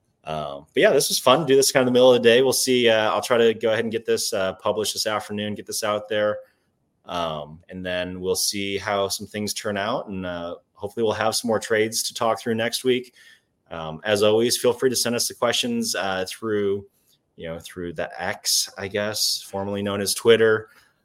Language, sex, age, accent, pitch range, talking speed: English, male, 30-49, American, 90-110 Hz, 235 wpm